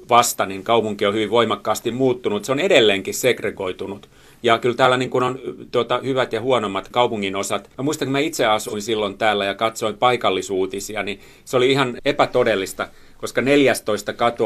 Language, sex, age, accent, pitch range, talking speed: Finnish, male, 40-59, native, 100-125 Hz, 160 wpm